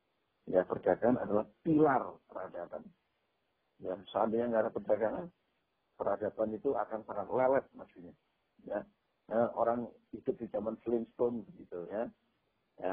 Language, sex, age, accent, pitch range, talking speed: Indonesian, male, 50-69, native, 110-145 Hz, 120 wpm